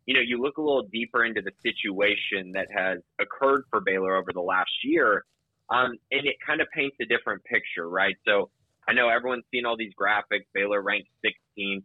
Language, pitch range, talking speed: English, 100-130 Hz, 195 wpm